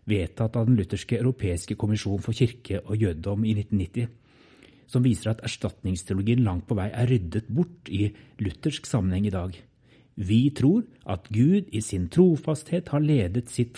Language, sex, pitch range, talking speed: English, male, 100-125 Hz, 165 wpm